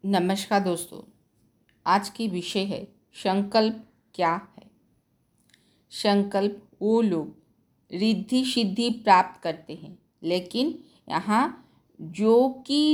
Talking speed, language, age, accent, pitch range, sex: 95 wpm, Hindi, 50-69, native, 180-230 Hz, female